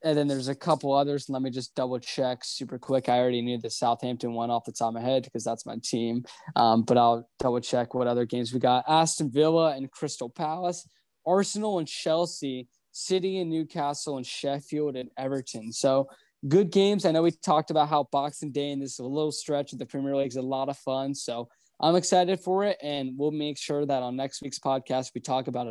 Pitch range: 130-175 Hz